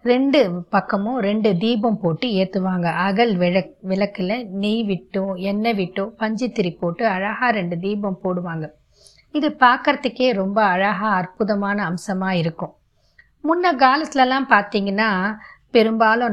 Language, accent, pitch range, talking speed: Tamil, native, 190-235 Hz, 110 wpm